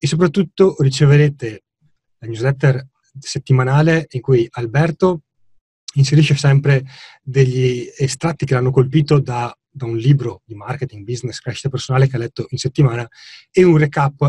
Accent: native